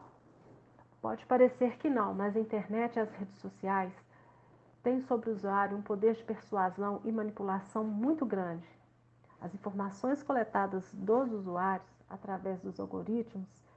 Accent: Brazilian